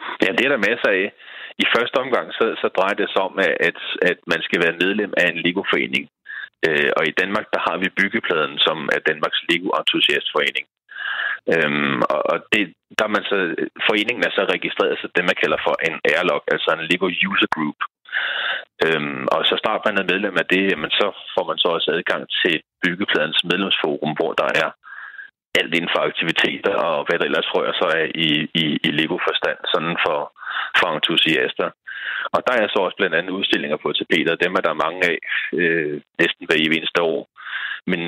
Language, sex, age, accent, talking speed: Danish, male, 30-49, native, 190 wpm